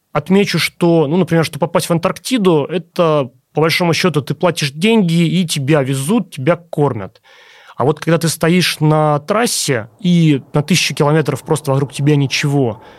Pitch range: 130-160 Hz